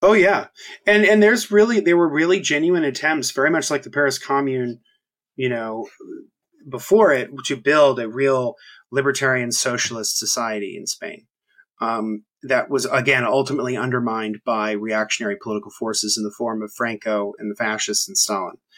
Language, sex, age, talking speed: English, male, 30-49, 160 wpm